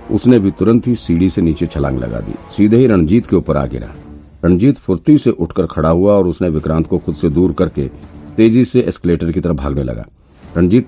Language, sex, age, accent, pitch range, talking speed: Hindi, male, 50-69, native, 80-100 Hz, 215 wpm